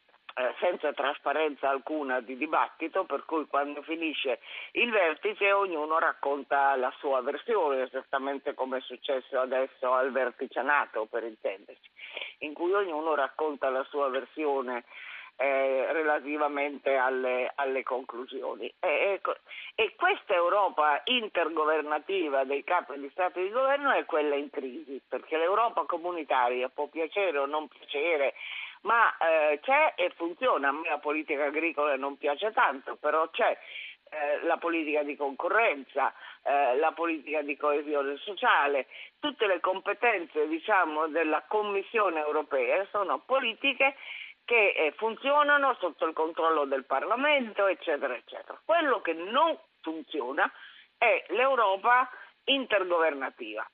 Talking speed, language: 125 wpm, Italian